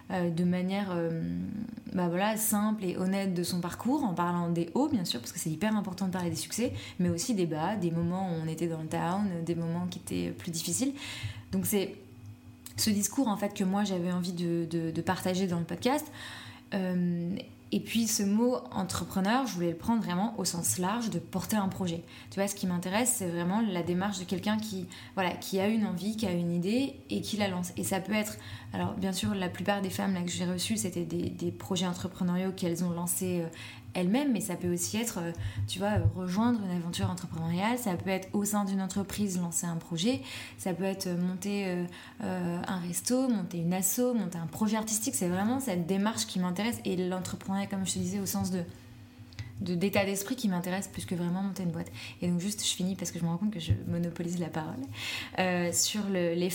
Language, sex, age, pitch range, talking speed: French, female, 20-39, 170-200 Hz, 225 wpm